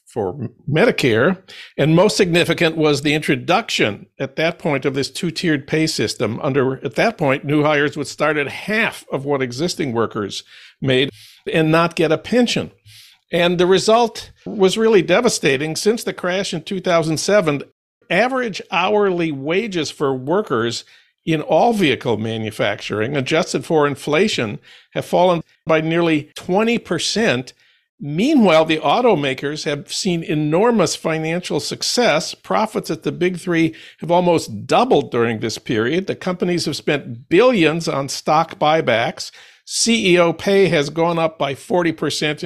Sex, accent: male, American